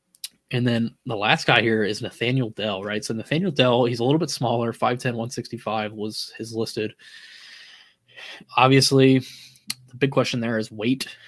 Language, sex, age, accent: English, male, 10-29, American